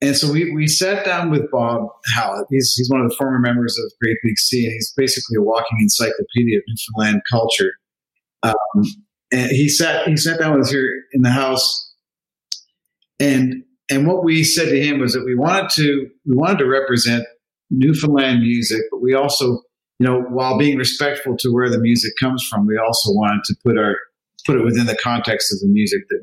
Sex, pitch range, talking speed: male, 110-135 Hz, 205 wpm